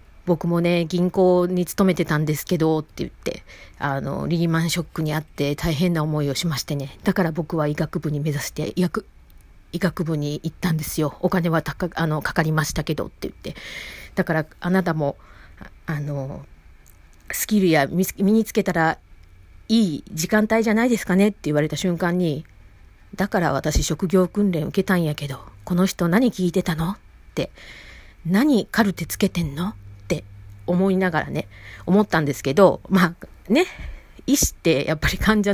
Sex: female